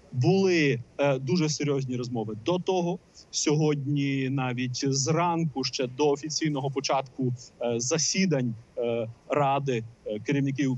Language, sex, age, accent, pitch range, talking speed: Ukrainian, male, 30-49, native, 140-185 Hz, 110 wpm